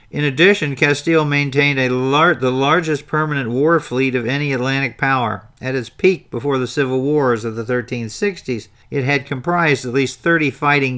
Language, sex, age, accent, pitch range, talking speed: English, male, 50-69, American, 120-145 Hz, 165 wpm